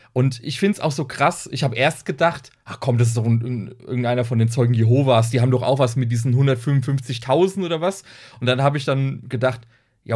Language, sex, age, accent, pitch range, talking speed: German, male, 30-49, German, 120-165 Hz, 235 wpm